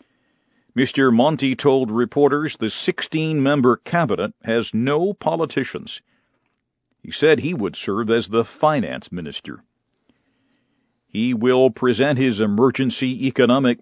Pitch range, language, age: 120-155 Hz, English, 50-69